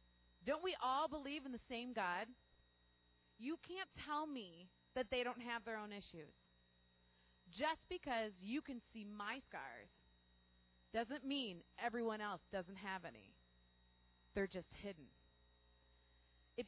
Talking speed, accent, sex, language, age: 135 wpm, American, female, English, 30-49